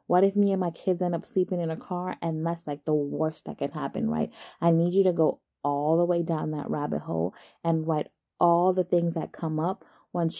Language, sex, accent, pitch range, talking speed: English, female, American, 160-195 Hz, 240 wpm